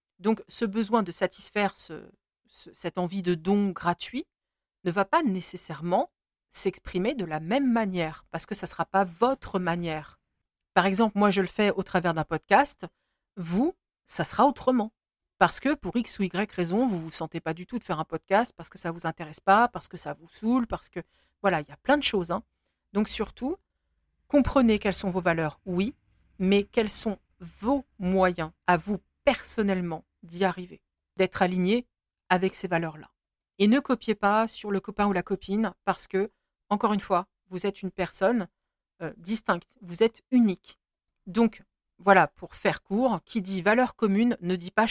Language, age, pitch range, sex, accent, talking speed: French, 50-69, 180-225 Hz, female, French, 185 wpm